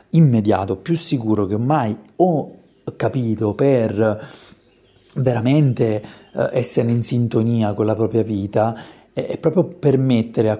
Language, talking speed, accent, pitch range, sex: Italian, 115 wpm, native, 110-130 Hz, male